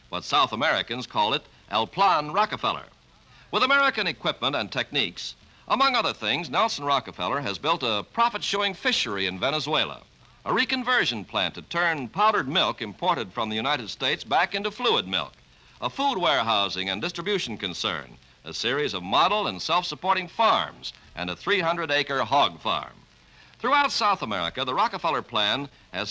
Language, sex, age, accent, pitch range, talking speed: English, male, 60-79, American, 130-215 Hz, 155 wpm